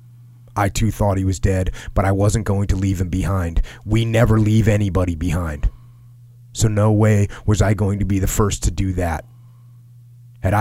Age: 30-49